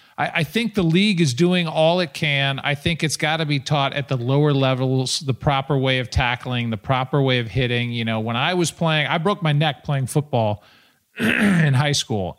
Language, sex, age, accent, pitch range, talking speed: English, male, 40-59, American, 125-155 Hz, 220 wpm